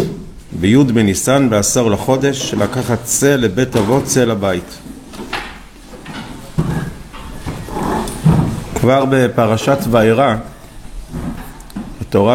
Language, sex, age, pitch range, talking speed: Hebrew, male, 50-69, 105-135 Hz, 70 wpm